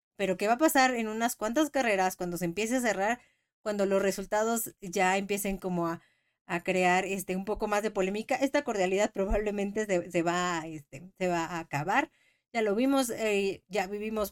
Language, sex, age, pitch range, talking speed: Spanish, female, 30-49, 185-235 Hz, 195 wpm